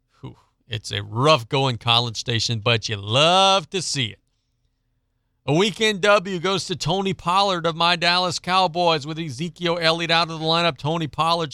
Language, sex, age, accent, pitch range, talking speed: English, male, 40-59, American, 120-180 Hz, 160 wpm